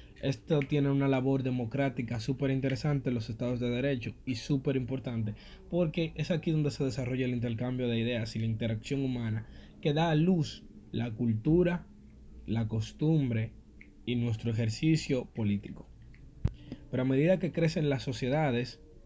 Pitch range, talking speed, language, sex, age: 120-150 Hz, 150 wpm, Spanish, male, 20-39